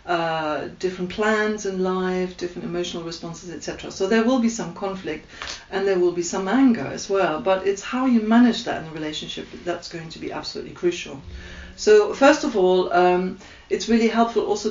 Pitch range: 170-200 Hz